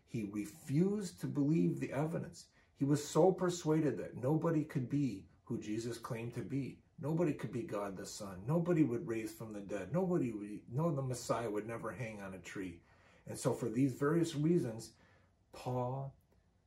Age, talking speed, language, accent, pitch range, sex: 50-69, 175 wpm, English, American, 100-135 Hz, male